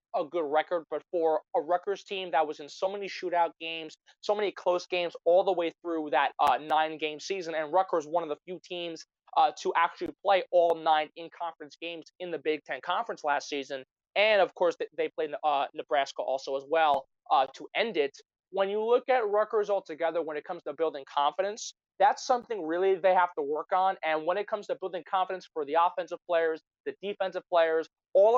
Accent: American